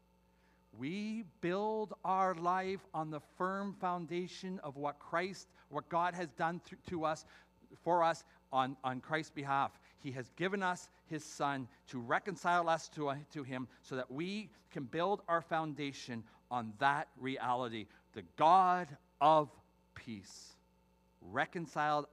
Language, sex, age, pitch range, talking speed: English, male, 40-59, 90-150 Hz, 140 wpm